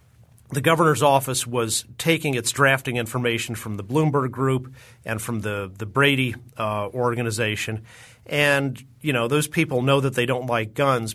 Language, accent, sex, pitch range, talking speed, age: English, American, male, 115-140 Hz, 160 wpm, 40-59